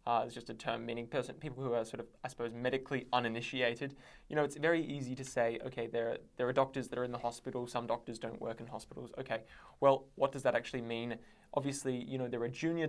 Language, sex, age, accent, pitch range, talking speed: English, male, 20-39, Australian, 120-135 Hz, 240 wpm